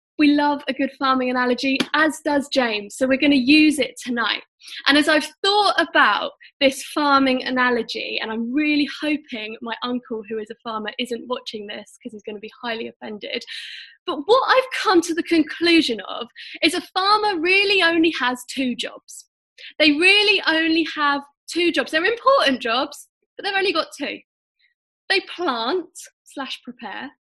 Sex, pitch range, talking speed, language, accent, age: female, 245-315 Hz, 170 wpm, English, British, 10-29